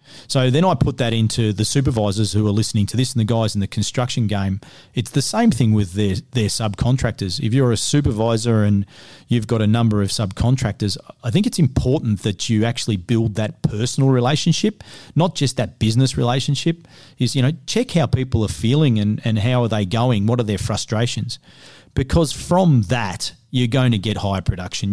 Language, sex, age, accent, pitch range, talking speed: English, male, 40-59, Australian, 110-130 Hz, 195 wpm